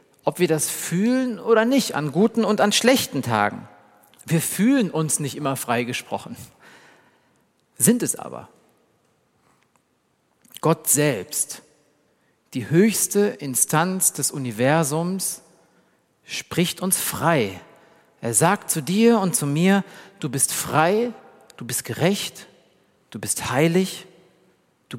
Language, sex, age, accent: German, male, 50-69, German